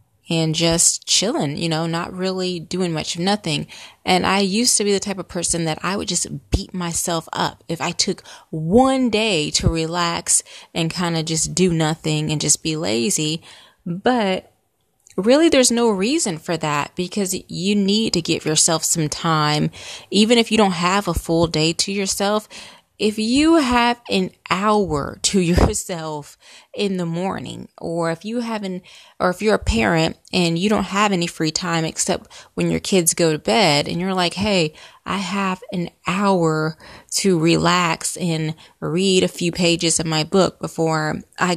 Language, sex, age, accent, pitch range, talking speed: English, female, 20-39, American, 165-200 Hz, 180 wpm